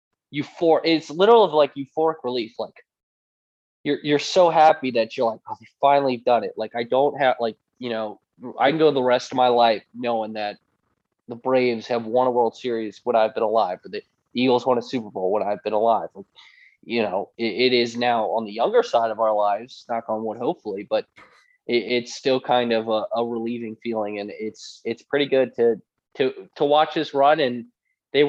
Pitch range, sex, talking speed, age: 115-145 Hz, male, 215 wpm, 20-39